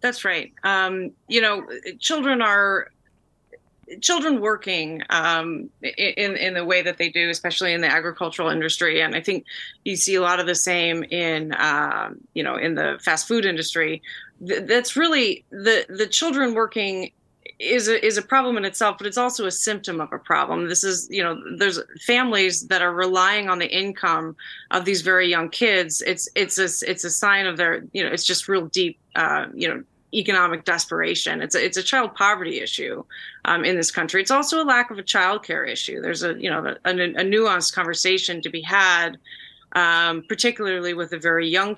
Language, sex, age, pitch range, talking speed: English, female, 30-49, 175-215 Hz, 195 wpm